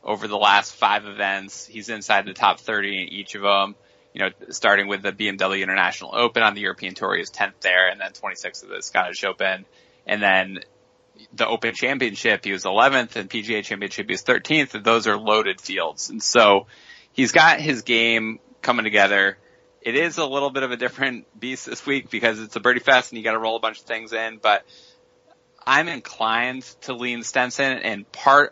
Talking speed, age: 205 wpm, 20-39